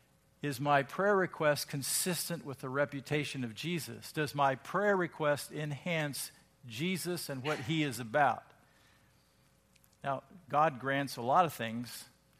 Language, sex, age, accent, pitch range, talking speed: English, male, 50-69, American, 125-150 Hz, 135 wpm